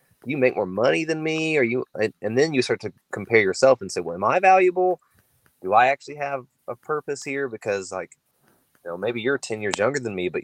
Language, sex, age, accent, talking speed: English, male, 20-39, American, 235 wpm